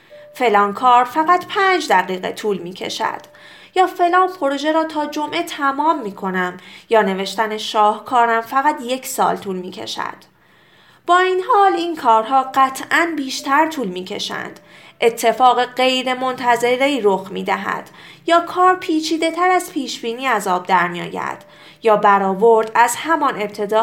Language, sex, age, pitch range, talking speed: Persian, female, 30-49, 220-310 Hz, 140 wpm